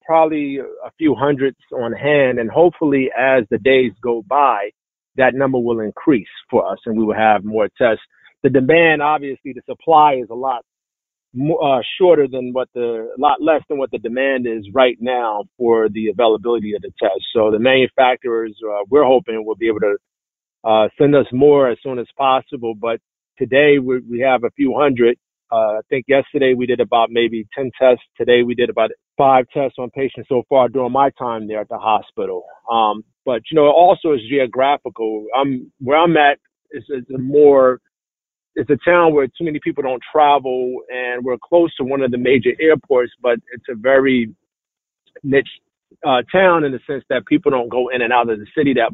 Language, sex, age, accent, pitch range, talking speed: English, male, 40-59, American, 120-145 Hz, 200 wpm